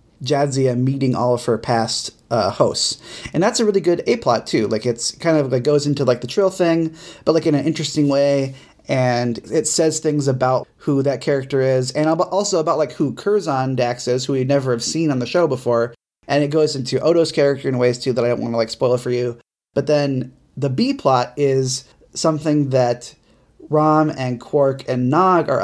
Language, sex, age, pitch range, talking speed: English, male, 30-49, 130-155 Hz, 210 wpm